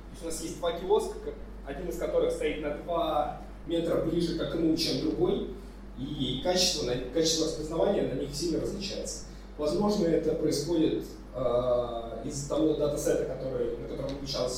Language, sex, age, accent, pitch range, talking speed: Russian, male, 20-39, native, 145-190 Hz, 150 wpm